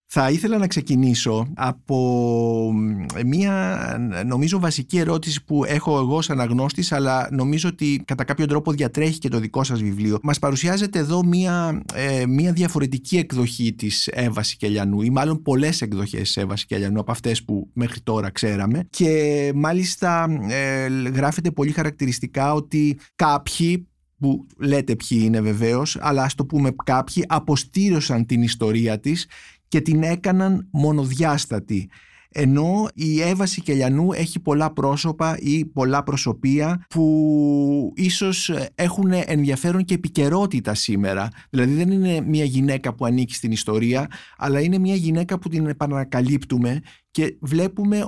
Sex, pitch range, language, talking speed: male, 120-160 Hz, Greek, 135 wpm